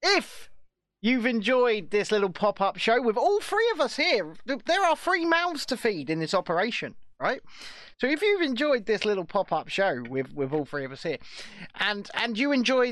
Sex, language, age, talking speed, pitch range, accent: male, English, 30-49, 195 wpm, 170-260 Hz, British